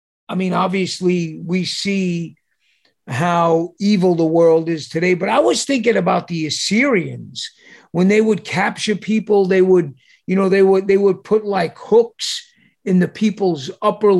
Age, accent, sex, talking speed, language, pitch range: 50-69, American, male, 160 wpm, English, 170-215 Hz